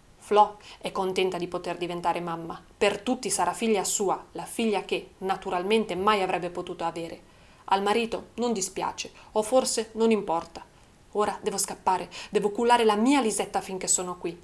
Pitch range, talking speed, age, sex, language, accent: 185-225 Hz, 160 wpm, 30-49, female, Italian, native